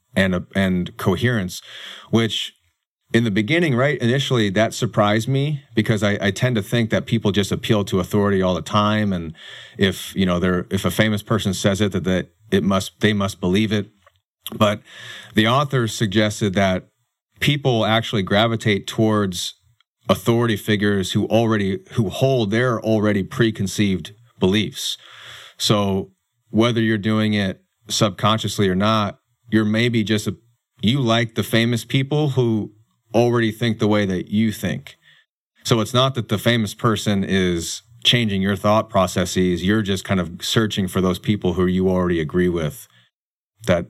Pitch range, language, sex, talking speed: 95-115 Hz, English, male, 155 wpm